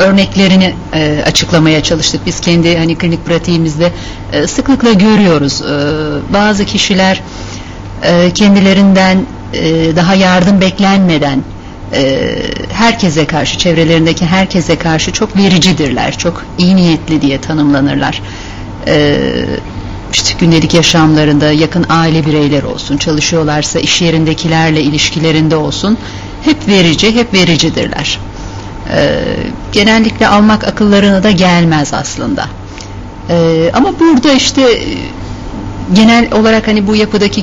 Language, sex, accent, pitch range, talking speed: Turkish, female, native, 155-200 Hz, 105 wpm